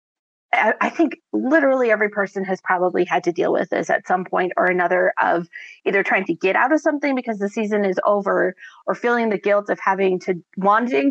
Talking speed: 205 wpm